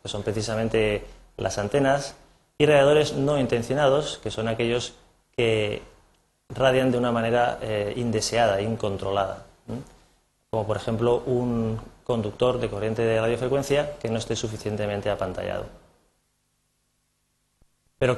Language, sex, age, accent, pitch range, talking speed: Spanish, male, 30-49, Spanish, 105-125 Hz, 120 wpm